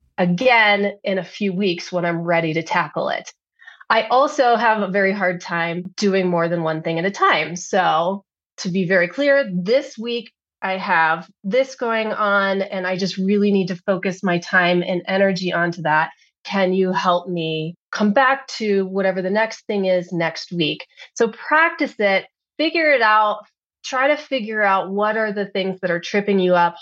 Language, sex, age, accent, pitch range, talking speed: English, female, 30-49, American, 175-210 Hz, 190 wpm